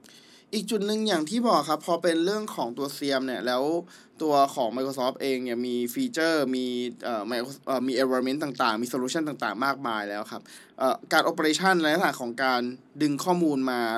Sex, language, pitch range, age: male, Thai, 130-170 Hz, 20-39